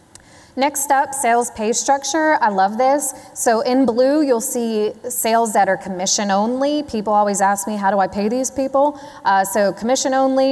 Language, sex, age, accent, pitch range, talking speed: English, female, 20-39, American, 190-255 Hz, 185 wpm